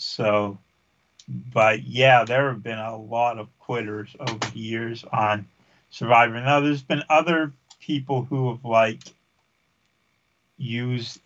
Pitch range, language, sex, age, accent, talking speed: 110-135 Hz, English, male, 50-69, American, 130 wpm